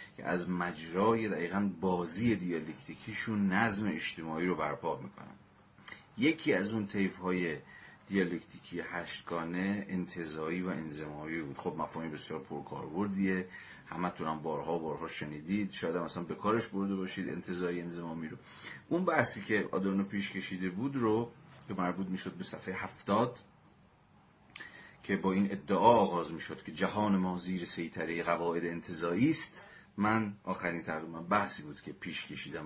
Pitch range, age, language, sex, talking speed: 85-100 Hz, 40-59, Persian, male, 130 wpm